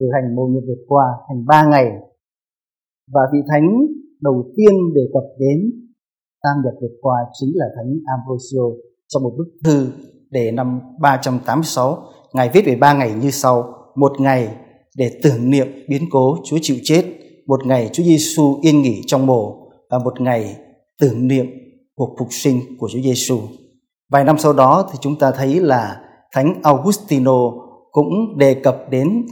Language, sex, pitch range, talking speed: Vietnamese, male, 125-150 Hz, 170 wpm